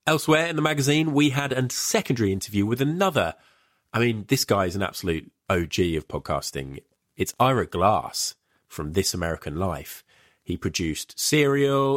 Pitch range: 90-125 Hz